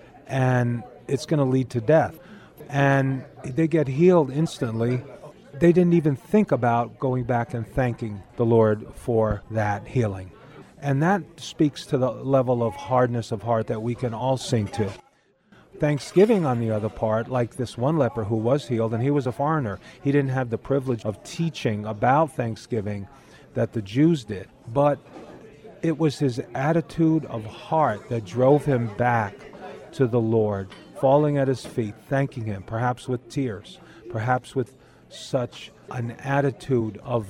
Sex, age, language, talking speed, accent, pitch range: male, 40-59, English, 160 wpm, American, 115-140 Hz